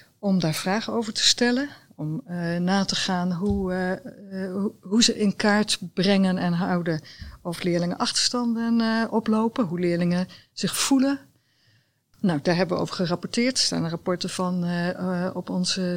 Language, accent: Dutch, Dutch